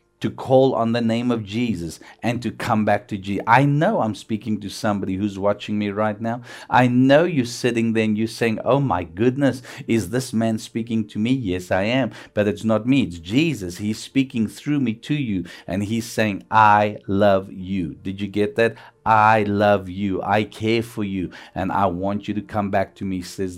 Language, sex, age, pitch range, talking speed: English, male, 50-69, 105-130 Hz, 210 wpm